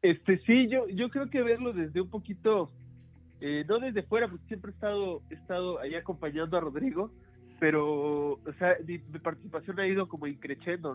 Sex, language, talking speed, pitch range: male, Spanish, 185 wpm, 140-185 Hz